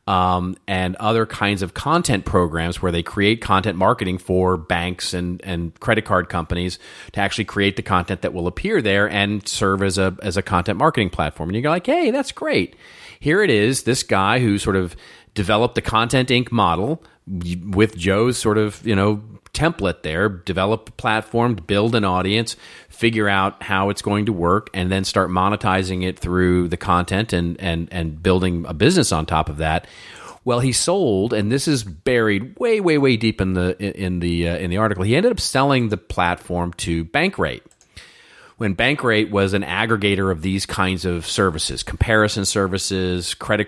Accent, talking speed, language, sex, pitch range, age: American, 190 wpm, English, male, 90-110 Hz, 40-59